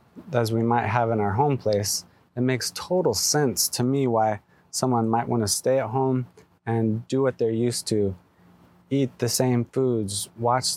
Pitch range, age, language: 110-130 Hz, 20-39, English